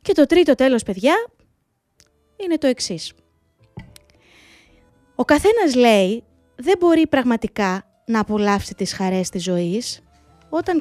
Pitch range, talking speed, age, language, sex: 205-310 Hz, 115 wpm, 20-39, Greek, female